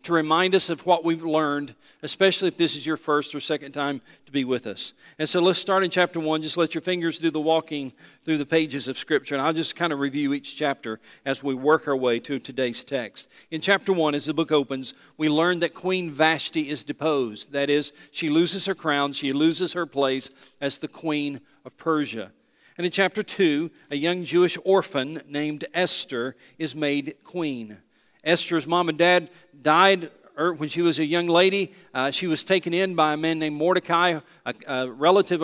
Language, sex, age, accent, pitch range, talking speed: English, male, 40-59, American, 145-180 Hz, 205 wpm